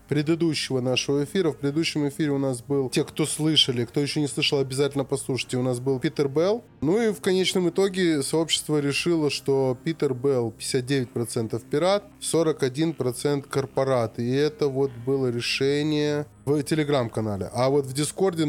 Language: Russian